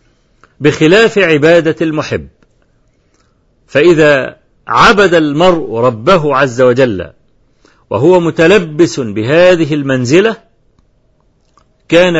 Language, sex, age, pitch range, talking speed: Arabic, male, 50-69, 150-200 Hz, 70 wpm